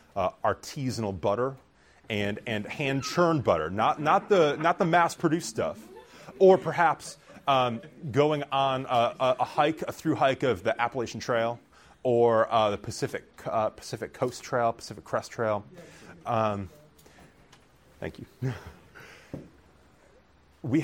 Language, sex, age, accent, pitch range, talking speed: English, male, 30-49, American, 90-140 Hz, 125 wpm